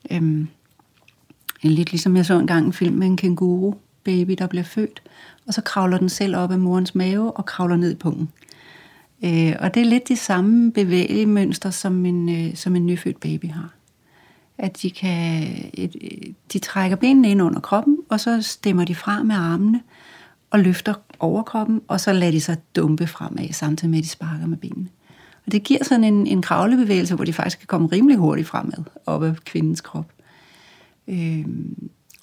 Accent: native